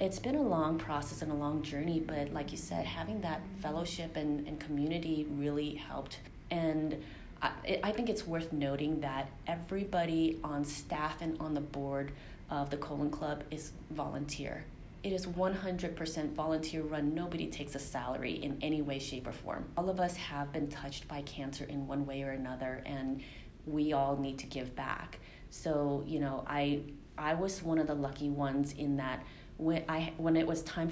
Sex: female